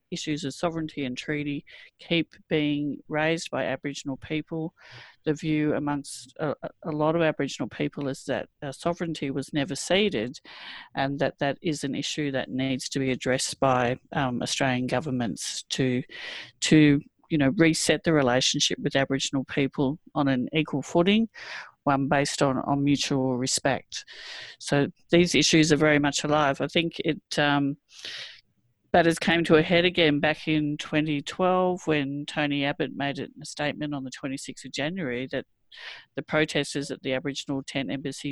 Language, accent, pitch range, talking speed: English, Australian, 135-155 Hz, 160 wpm